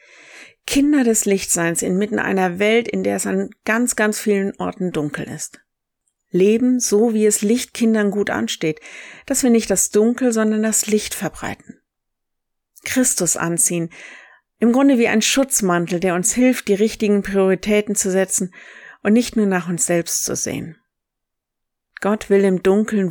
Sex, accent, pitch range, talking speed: female, German, 180-210 Hz, 155 wpm